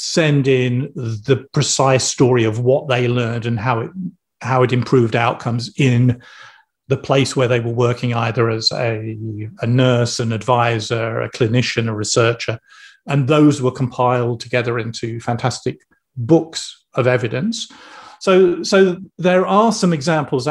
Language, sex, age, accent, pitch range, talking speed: English, male, 40-59, British, 125-160 Hz, 145 wpm